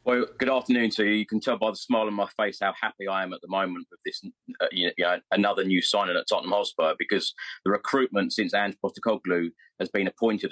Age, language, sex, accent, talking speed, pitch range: 30-49, English, male, British, 235 wpm, 95-110 Hz